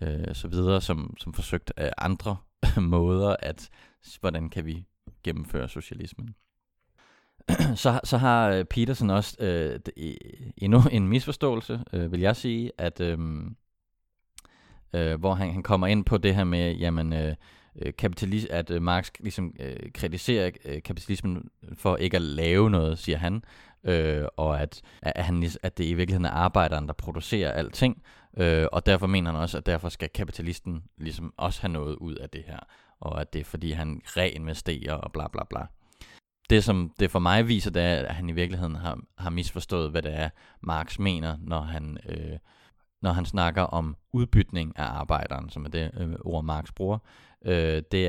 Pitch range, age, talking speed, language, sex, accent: 80-95 Hz, 30-49, 170 wpm, Danish, male, native